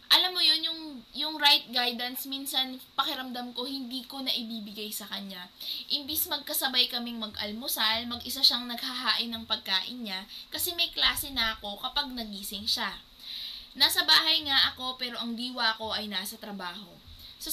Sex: female